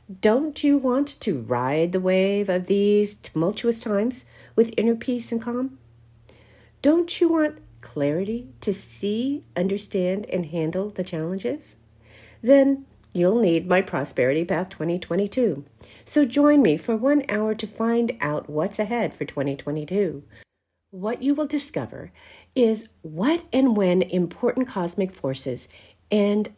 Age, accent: 50-69, American